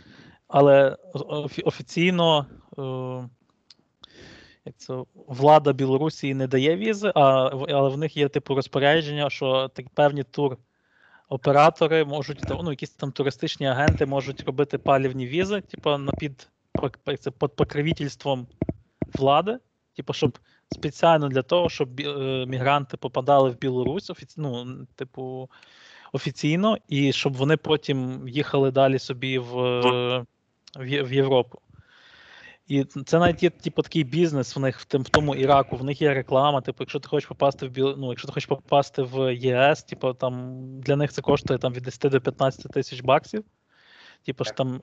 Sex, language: male, Ukrainian